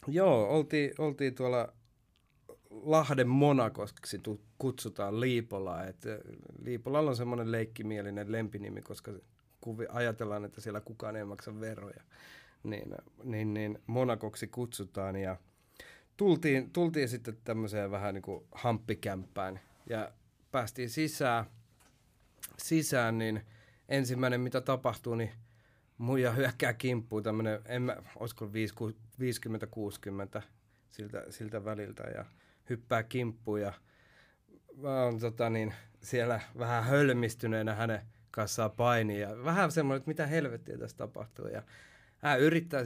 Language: Finnish